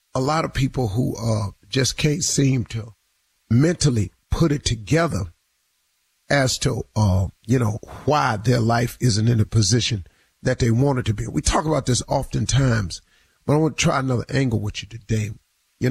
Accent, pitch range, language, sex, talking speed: American, 115-140 Hz, English, male, 180 wpm